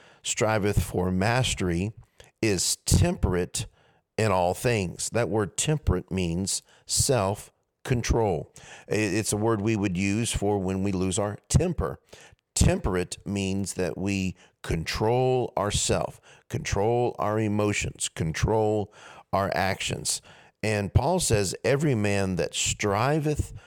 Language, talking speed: English, 110 wpm